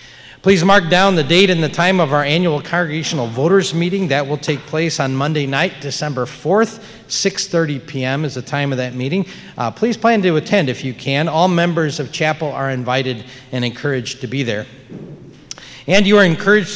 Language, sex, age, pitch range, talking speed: English, male, 40-59, 135-180 Hz, 195 wpm